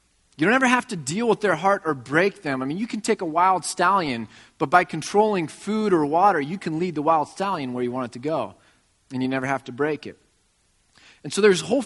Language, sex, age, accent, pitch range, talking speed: English, male, 30-49, American, 130-180 Hz, 250 wpm